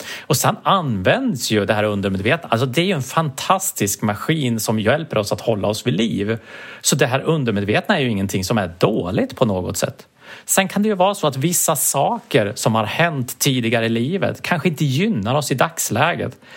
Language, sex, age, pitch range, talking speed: English, male, 30-49, 110-150 Hz, 205 wpm